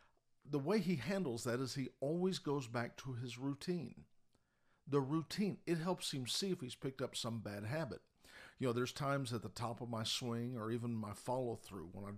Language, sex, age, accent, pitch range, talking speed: English, male, 50-69, American, 115-150 Hz, 210 wpm